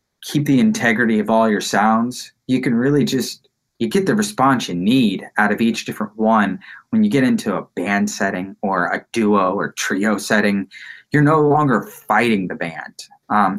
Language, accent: English, American